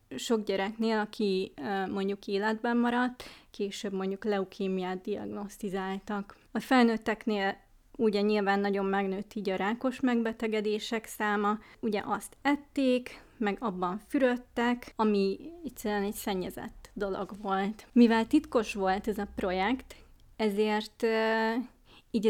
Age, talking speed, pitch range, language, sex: 20-39, 110 wpm, 195-225 Hz, Hungarian, female